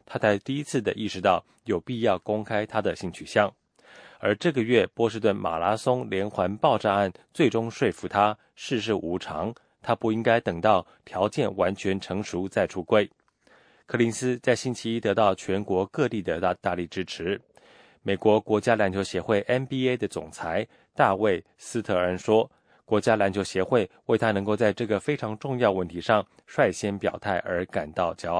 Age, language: 20-39, English